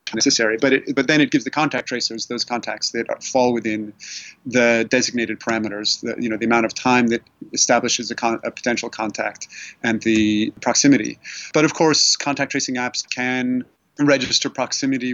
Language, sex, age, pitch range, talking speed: English, male, 30-49, 120-140 Hz, 165 wpm